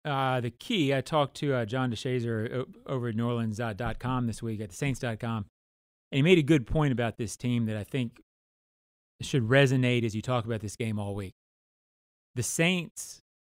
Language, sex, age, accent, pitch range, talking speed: English, male, 30-49, American, 110-130 Hz, 205 wpm